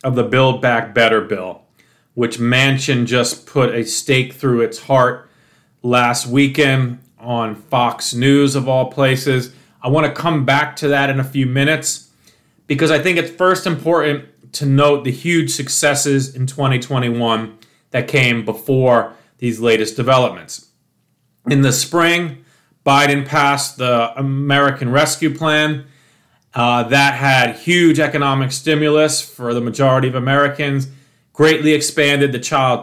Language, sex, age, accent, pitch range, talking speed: English, male, 40-59, American, 125-150 Hz, 140 wpm